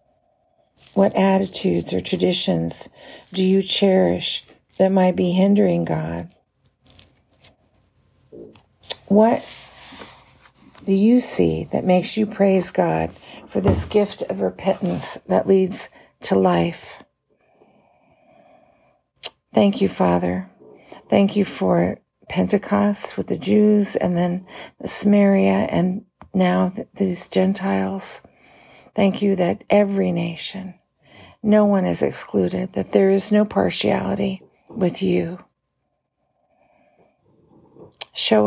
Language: English